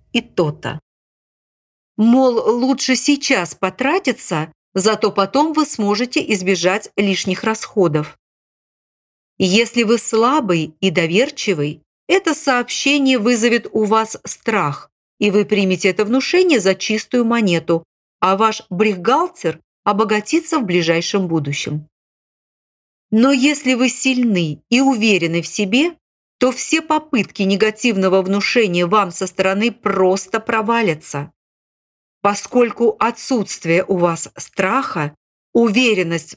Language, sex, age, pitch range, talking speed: Russian, female, 40-59, 180-245 Hz, 105 wpm